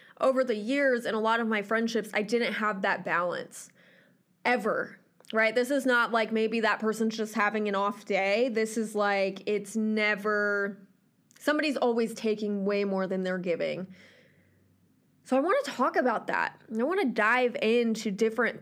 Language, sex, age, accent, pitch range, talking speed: English, female, 20-39, American, 200-245 Hz, 175 wpm